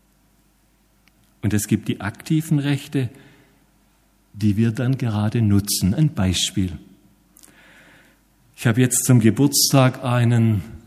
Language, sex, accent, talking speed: German, male, German, 105 wpm